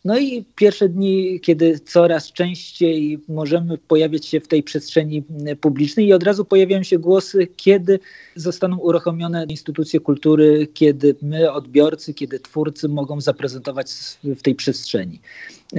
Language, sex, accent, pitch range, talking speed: Polish, male, native, 155-185 Hz, 135 wpm